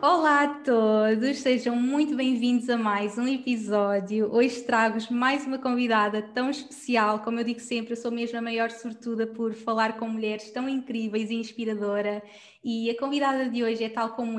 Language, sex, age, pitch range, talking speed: Portuguese, female, 20-39, 220-250 Hz, 180 wpm